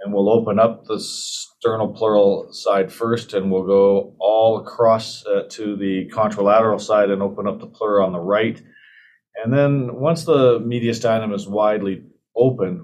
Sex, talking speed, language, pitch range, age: male, 165 wpm, English, 100-115 Hz, 40-59